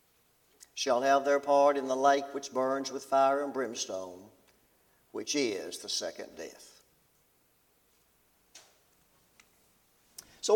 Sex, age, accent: male, 60-79, American